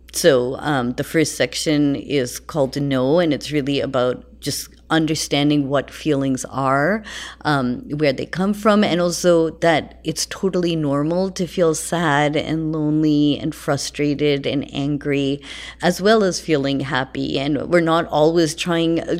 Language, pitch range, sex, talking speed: English, 140-165 Hz, female, 155 wpm